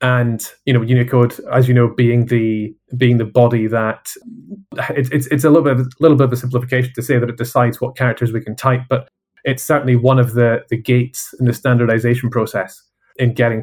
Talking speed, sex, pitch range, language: 215 wpm, male, 115-130 Hz, English